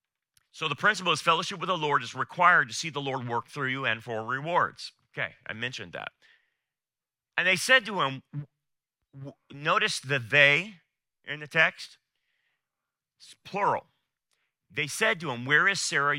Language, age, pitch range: English, 40-59, 135-180 Hz